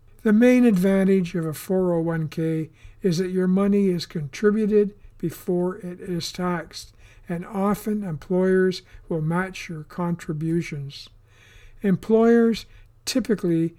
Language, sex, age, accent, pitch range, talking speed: English, male, 60-79, American, 155-190 Hz, 110 wpm